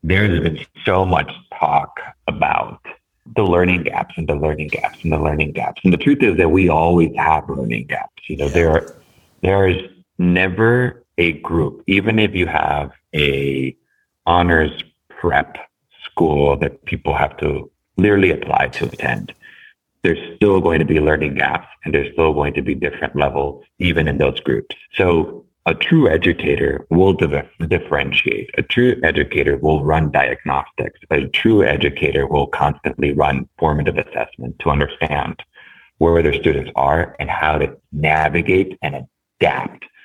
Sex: male